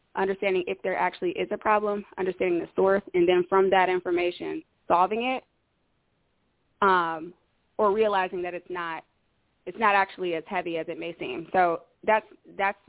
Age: 20-39